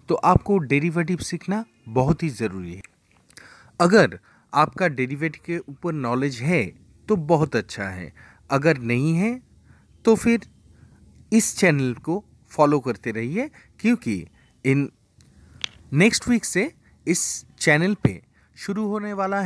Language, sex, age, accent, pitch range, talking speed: Hindi, male, 30-49, native, 130-200 Hz, 125 wpm